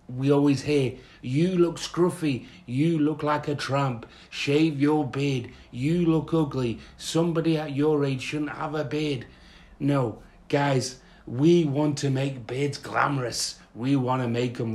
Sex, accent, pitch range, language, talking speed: male, British, 120-150 Hz, English, 155 wpm